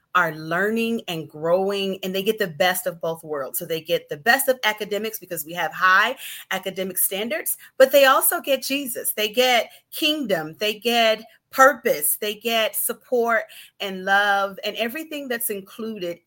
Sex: female